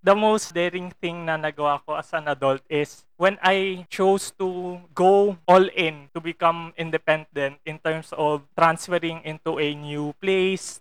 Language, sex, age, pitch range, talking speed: Filipino, male, 20-39, 155-185 Hz, 160 wpm